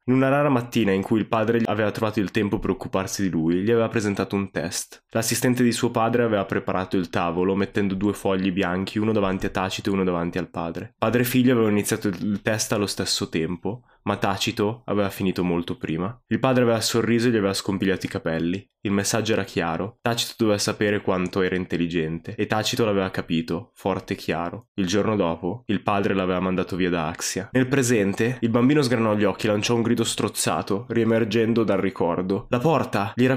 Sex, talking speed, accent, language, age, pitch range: male, 205 wpm, native, Italian, 20-39, 95-120 Hz